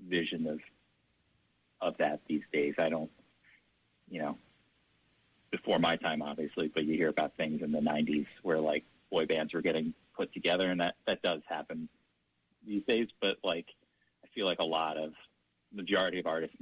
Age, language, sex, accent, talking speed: 40-59, English, male, American, 175 wpm